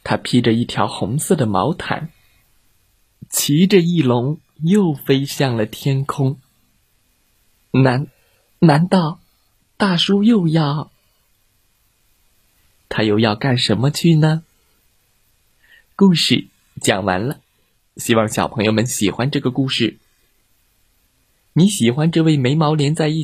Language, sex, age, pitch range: Chinese, male, 20-39, 105-155 Hz